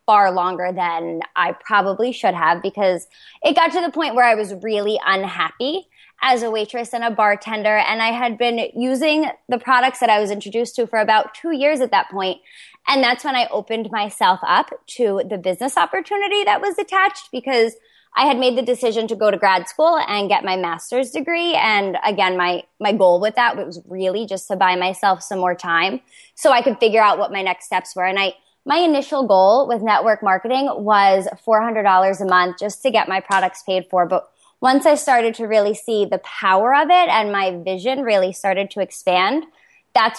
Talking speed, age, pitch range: 205 wpm, 20-39, 190-250 Hz